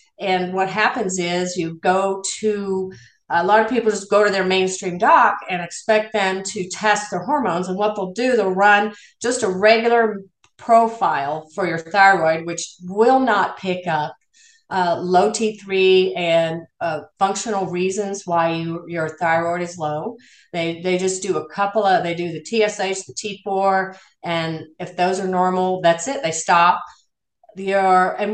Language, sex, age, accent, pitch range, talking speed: English, female, 40-59, American, 180-215 Hz, 165 wpm